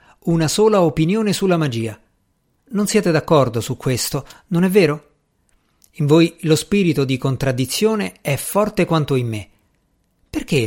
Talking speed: 140 wpm